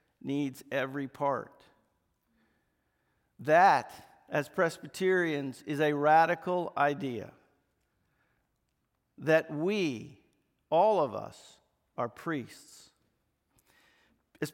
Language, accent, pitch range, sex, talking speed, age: English, American, 160-225 Hz, male, 75 wpm, 50-69